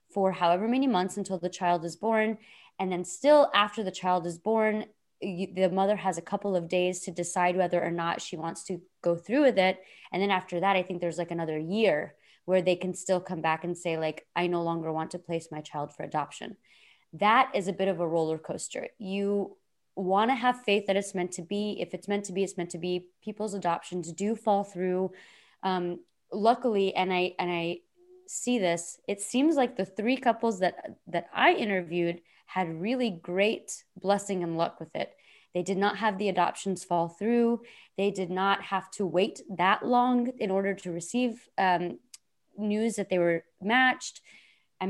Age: 20-39